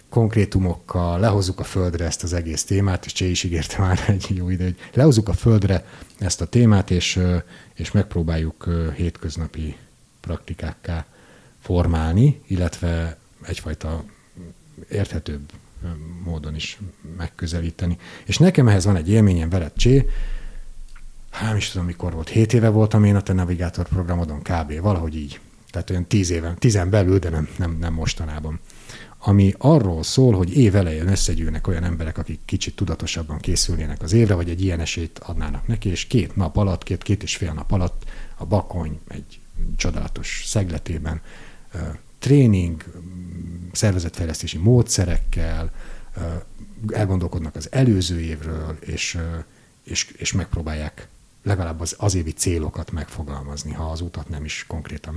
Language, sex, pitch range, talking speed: Hungarian, male, 80-100 Hz, 140 wpm